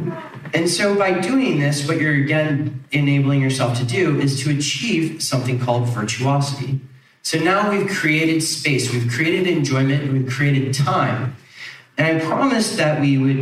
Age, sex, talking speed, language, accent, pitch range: 30-49, male, 155 wpm, English, American, 125-160 Hz